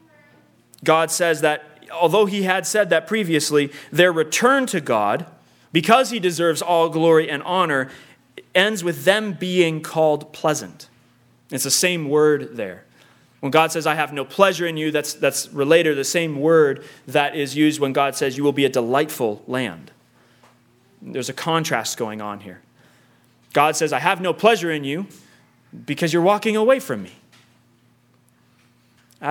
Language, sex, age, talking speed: English, male, 30-49, 165 wpm